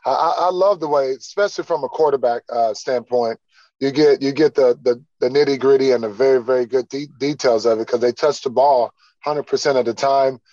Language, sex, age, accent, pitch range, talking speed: English, male, 20-39, American, 130-155 Hz, 210 wpm